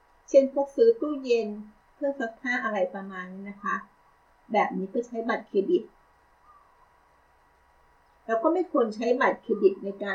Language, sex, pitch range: Thai, female, 200-265 Hz